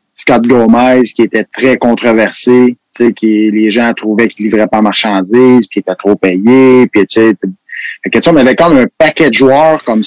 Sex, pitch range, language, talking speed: male, 110-135 Hz, French, 215 wpm